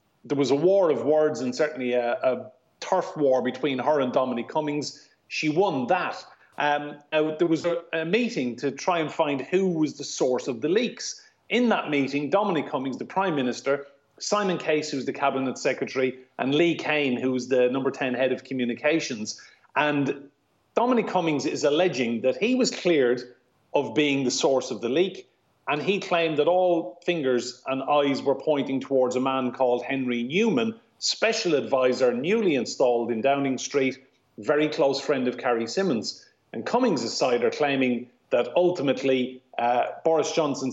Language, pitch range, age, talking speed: English, 130-160 Hz, 30-49, 170 wpm